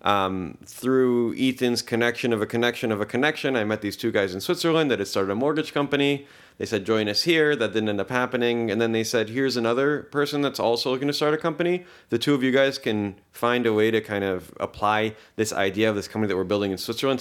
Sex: male